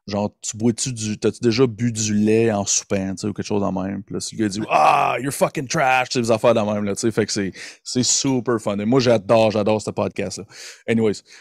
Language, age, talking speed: French, 30-49, 275 wpm